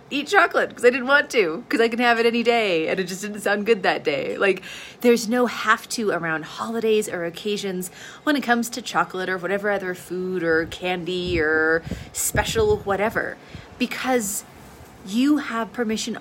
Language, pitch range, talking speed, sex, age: English, 180-245 Hz, 180 wpm, female, 30-49